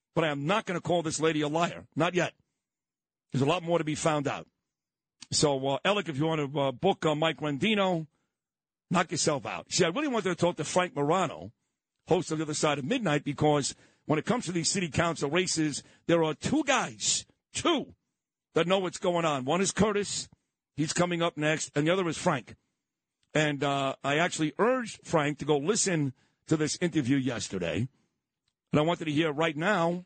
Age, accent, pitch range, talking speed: 50-69, American, 150-180 Hz, 205 wpm